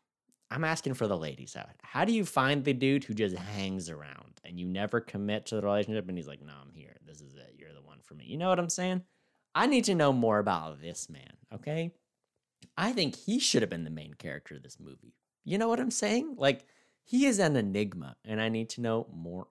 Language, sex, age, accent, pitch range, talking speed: English, male, 30-49, American, 90-130 Hz, 245 wpm